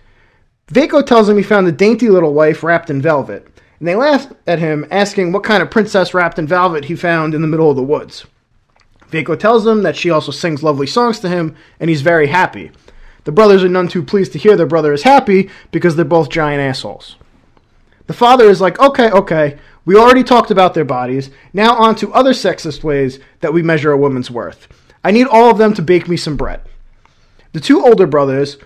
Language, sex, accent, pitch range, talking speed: English, male, American, 150-205 Hz, 215 wpm